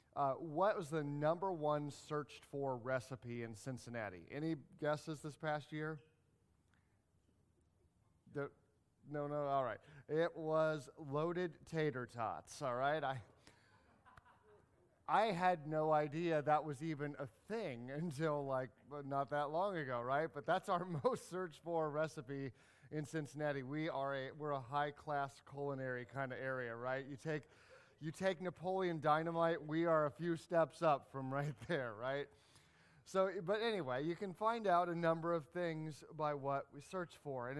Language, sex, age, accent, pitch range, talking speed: English, male, 30-49, American, 130-165 Hz, 155 wpm